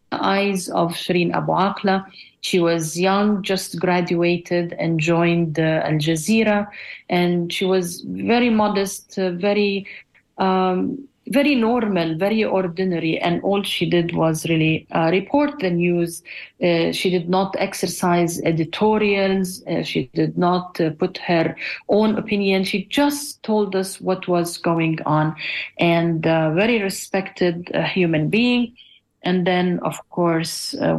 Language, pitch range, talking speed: English, 165-195 Hz, 140 wpm